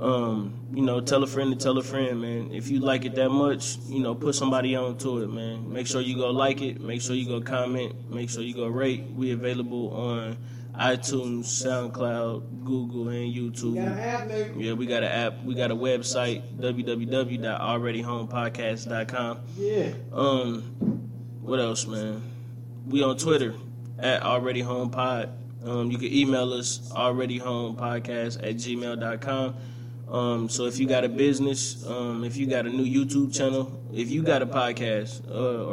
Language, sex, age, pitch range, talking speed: English, male, 20-39, 120-130 Hz, 160 wpm